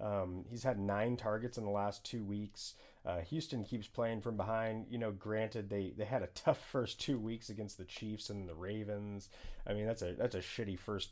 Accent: American